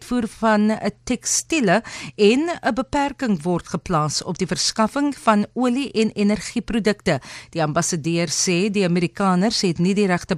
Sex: female